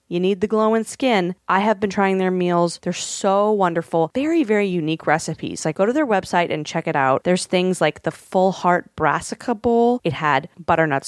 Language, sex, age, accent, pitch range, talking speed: English, female, 20-39, American, 165-220 Hz, 210 wpm